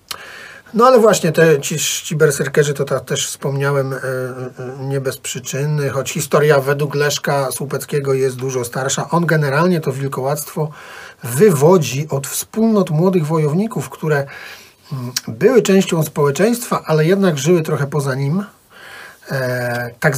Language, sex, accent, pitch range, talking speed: Polish, male, native, 130-160 Hz, 120 wpm